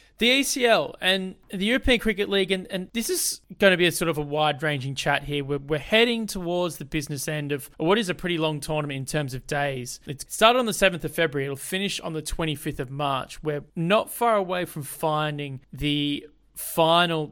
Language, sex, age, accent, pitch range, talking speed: English, male, 20-39, Australian, 145-175 Hz, 210 wpm